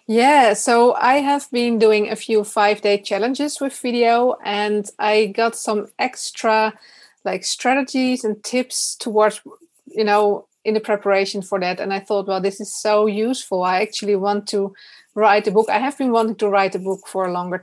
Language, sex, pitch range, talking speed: English, female, 200-235 Hz, 185 wpm